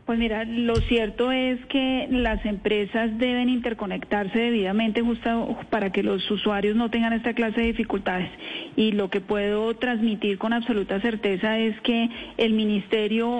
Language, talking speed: Spanish, 150 wpm